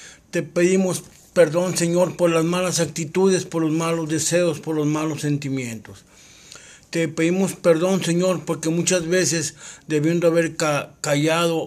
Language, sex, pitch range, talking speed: Spanish, male, 145-170 Hz, 135 wpm